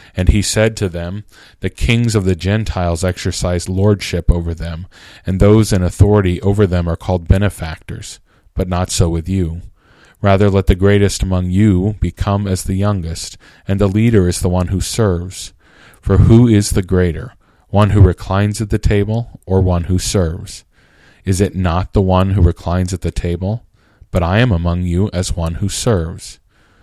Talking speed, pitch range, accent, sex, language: 180 wpm, 90-105 Hz, American, male, English